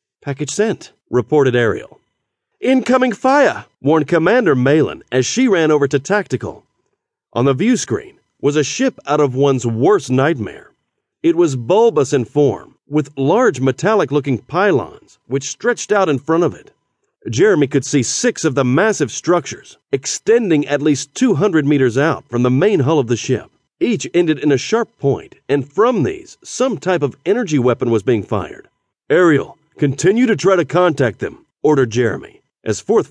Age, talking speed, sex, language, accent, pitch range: 40-59, 165 wpm, male, English, American, 130-195 Hz